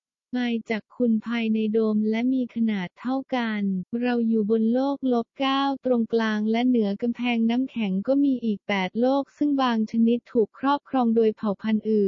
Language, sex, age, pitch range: English, female, 20-39, 210-250 Hz